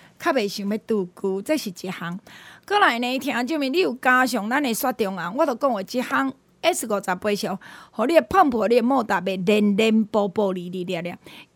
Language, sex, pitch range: Chinese, female, 210-285 Hz